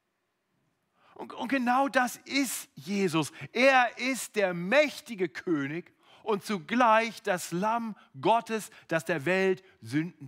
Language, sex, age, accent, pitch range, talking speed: German, male, 40-59, German, 145-230 Hz, 110 wpm